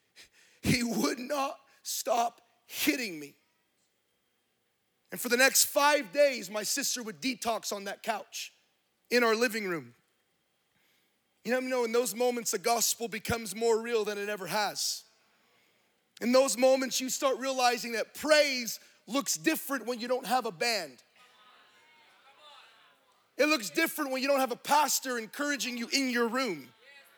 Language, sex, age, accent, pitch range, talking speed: English, male, 30-49, American, 225-270 Hz, 150 wpm